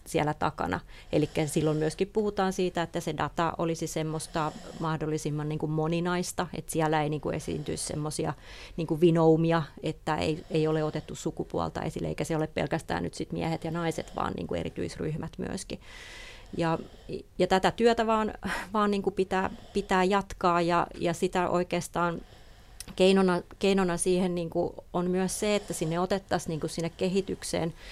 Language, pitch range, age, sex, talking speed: English, 160-185 Hz, 30-49, female, 135 wpm